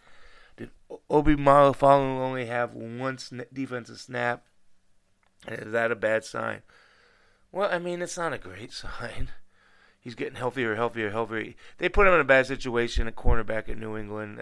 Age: 30-49